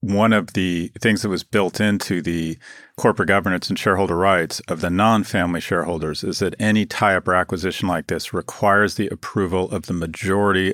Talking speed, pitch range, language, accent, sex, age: 180 wpm, 90-105 Hz, English, American, male, 40-59